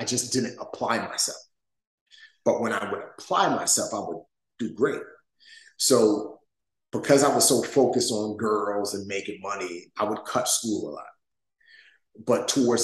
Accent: American